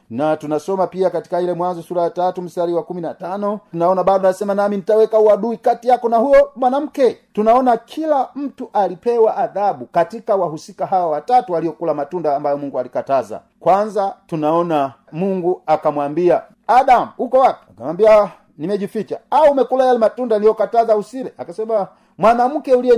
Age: 40-59